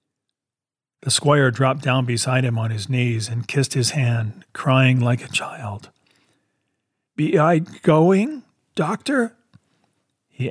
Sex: male